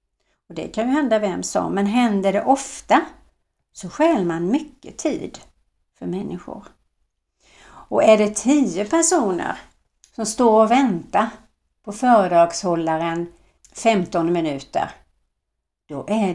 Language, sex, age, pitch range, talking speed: Swedish, female, 60-79, 170-235 Hz, 120 wpm